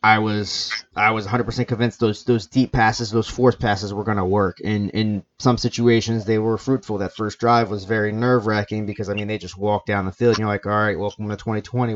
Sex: male